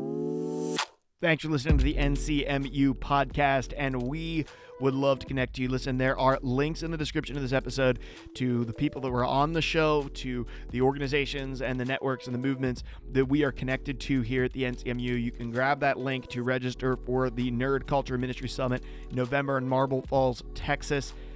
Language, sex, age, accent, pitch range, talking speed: English, male, 30-49, American, 125-140 Hz, 195 wpm